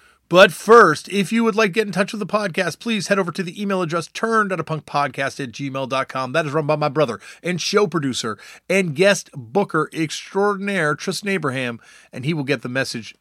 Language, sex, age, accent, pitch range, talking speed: English, male, 30-49, American, 125-170 Hz, 210 wpm